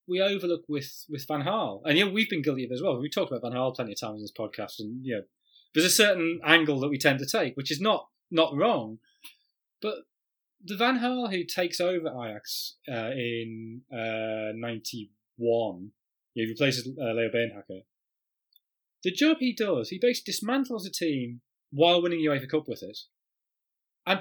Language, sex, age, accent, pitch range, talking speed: English, male, 30-49, British, 125-195 Hz, 195 wpm